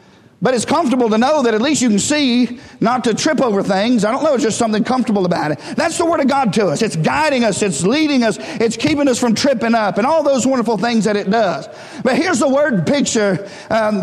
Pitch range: 230-300 Hz